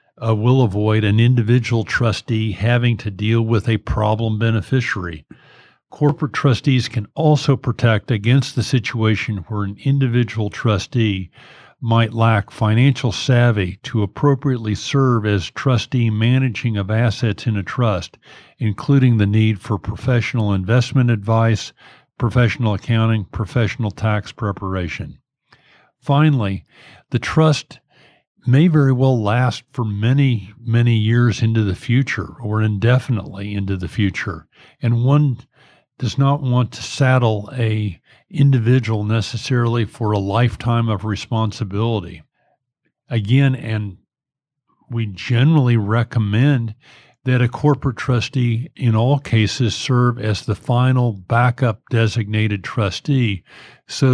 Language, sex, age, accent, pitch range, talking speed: English, male, 50-69, American, 110-130 Hz, 115 wpm